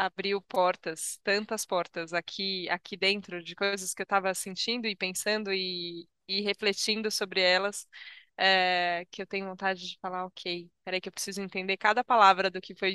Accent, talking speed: Brazilian, 175 wpm